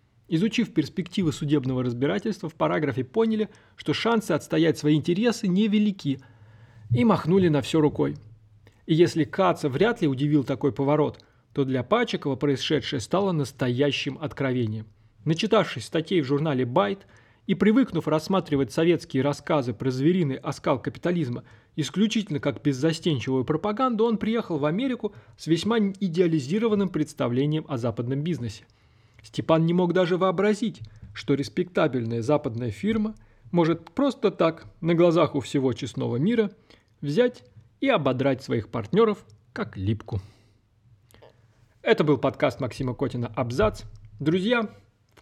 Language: Russian